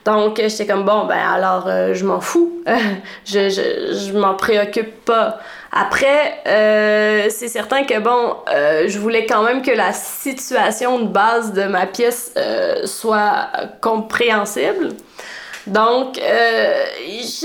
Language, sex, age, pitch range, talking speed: French, female, 20-39, 215-260 Hz, 125 wpm